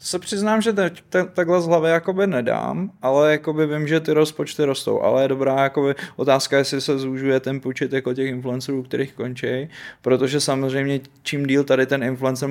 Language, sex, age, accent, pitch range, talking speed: Czech, male, 20-39, native, 120-135 Hz, 180 wpm